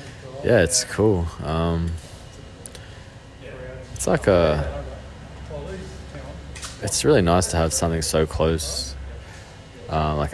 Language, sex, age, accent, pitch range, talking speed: English, male, 20-39, Australian, 75-95 Hz, 100 wpm